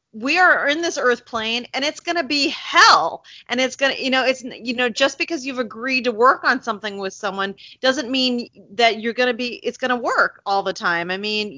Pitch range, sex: 205-260 Hz, female